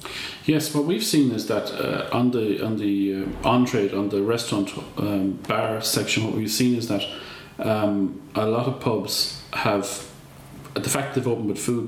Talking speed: 180 wpm